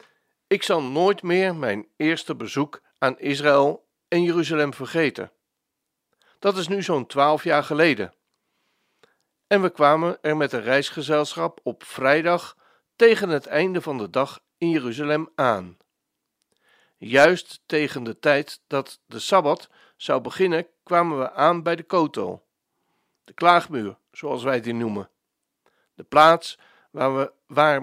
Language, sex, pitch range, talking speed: Dutch, male, 140-180 Hz, 135 wpm